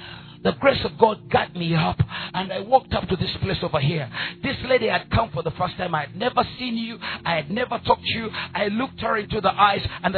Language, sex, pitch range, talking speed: English, male, 160-225 Hz, 250 wpm